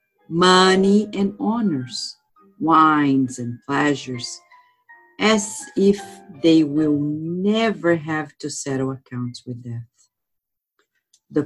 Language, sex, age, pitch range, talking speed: English, female, 50-69, 130-185 Hz, 95 wpm